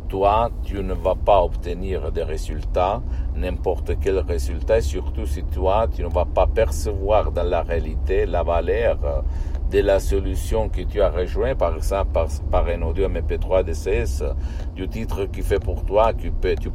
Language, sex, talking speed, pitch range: Italian, male, 175 wpm, 80-105 Hz